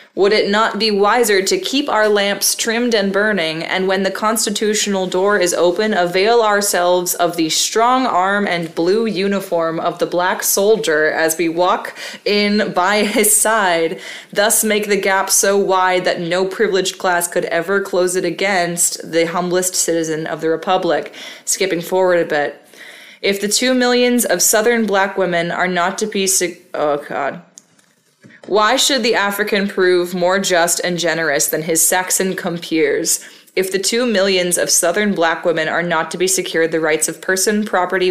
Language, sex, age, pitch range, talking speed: English, female, 20-39, 175-215 Hz, 170 wpm